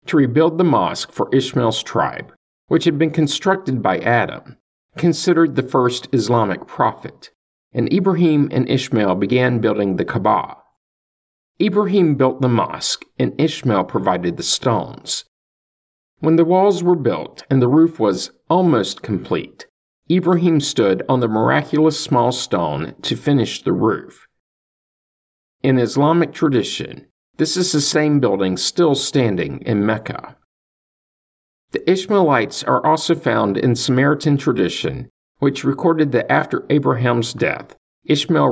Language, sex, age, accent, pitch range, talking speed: English, male, 50-69, American, 115-160 Hz, 130 wpm